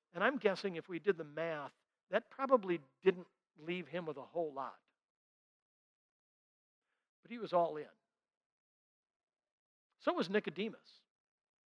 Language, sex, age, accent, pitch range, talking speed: English, male, 60-79, American, 160-210 Hz, 130 wpm